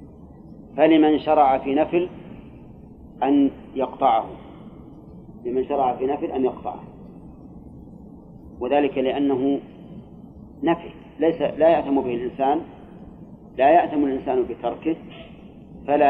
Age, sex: 40-59, male